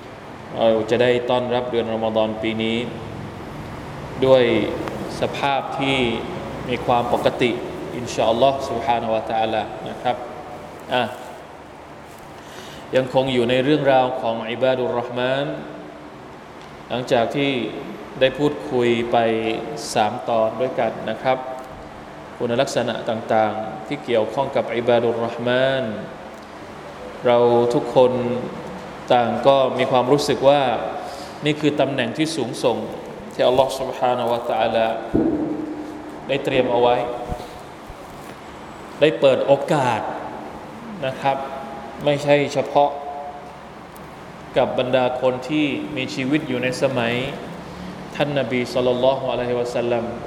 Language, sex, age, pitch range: Thai, male, 20-39, 115-140 Hz